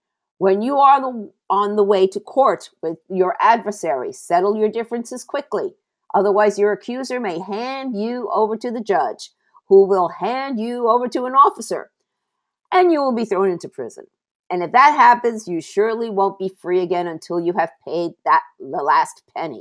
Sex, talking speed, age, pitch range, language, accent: female, 180 wpm, 50-69, 180-250 Hz, English, American